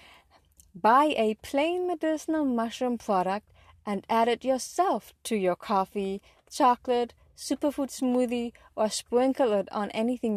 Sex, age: female, 20-39